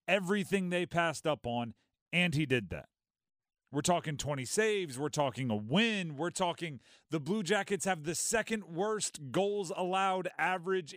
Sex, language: male, English